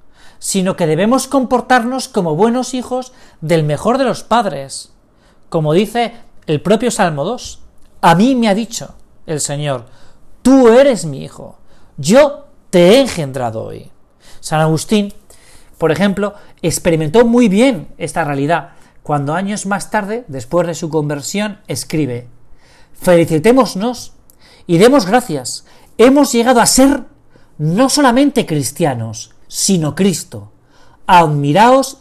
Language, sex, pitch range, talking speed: Spanish, male, 150-235 Hz, 125 wpm